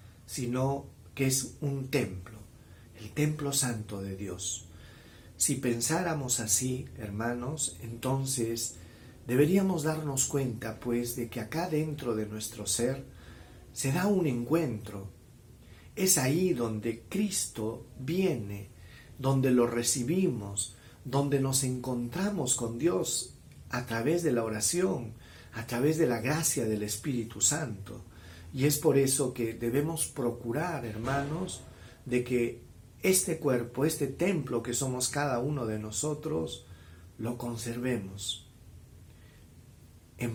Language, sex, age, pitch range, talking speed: Spanish, male, 50-69, 105-135 Hz, 115 wpm